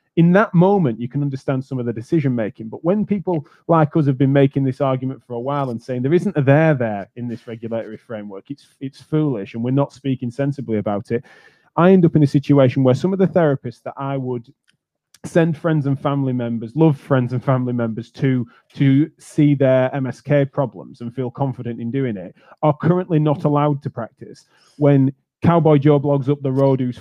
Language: English